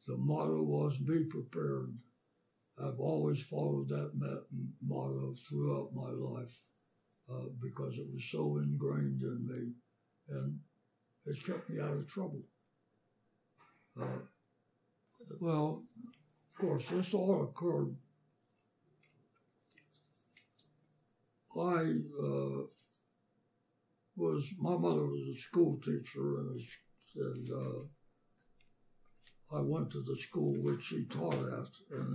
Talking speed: 105 wpm